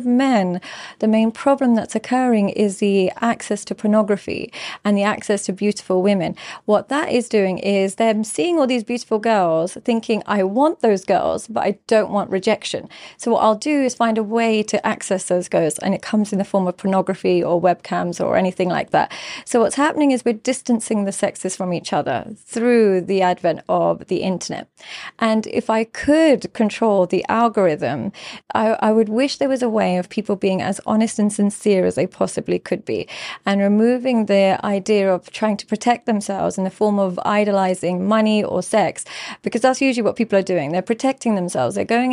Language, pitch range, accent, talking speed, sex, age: English, 195-230 Hz, British, 195 wpm, female, 30-49